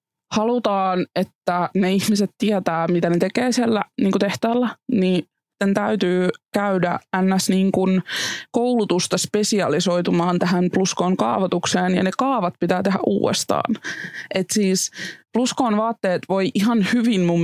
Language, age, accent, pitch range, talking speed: Finnish, 20-39, native, 170-210 Hz, 120 wpm